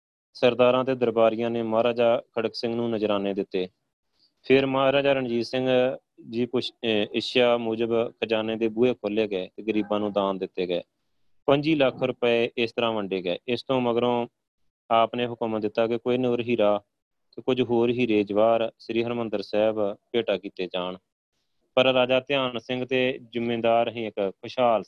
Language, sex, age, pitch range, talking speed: Punjabi, male, 30-49, 100-120 Hz, 155 wpm